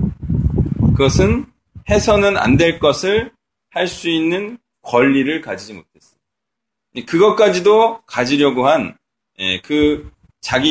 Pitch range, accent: 150-225 Hz, native